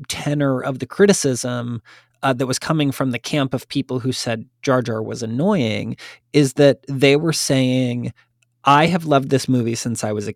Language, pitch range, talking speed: English, 120-160 Hz, 190 wpm